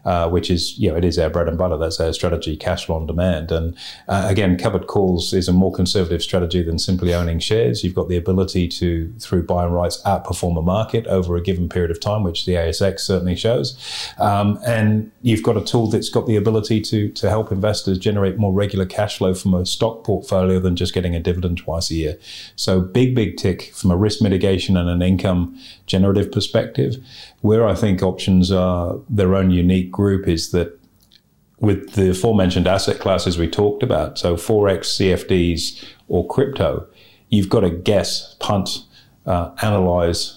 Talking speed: 195 wpm